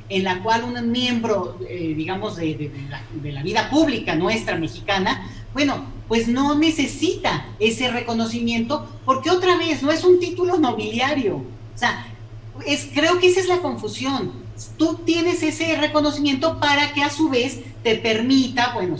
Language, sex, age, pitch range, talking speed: Spanish, female, 40-59, 175-285 Hz, 165 wpm